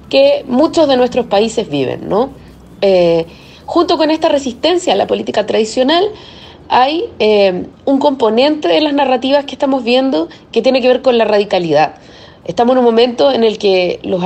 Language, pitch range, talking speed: Spanish, 210-290 Hz, 175 wpm